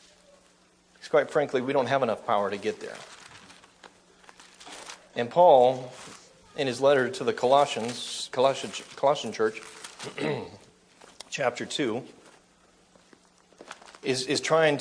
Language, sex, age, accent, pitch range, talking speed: English, male, 40-59, American, 115-140 Hz, 105 wpm